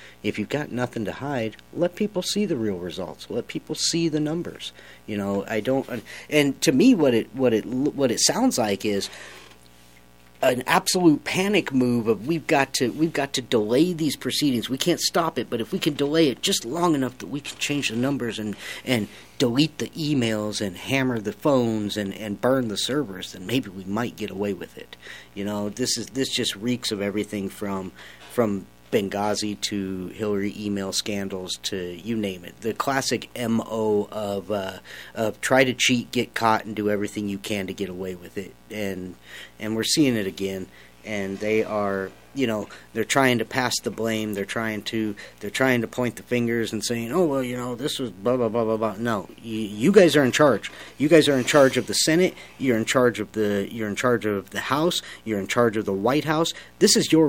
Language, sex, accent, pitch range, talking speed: English, male, American, 100-135 Hz, 215 wpm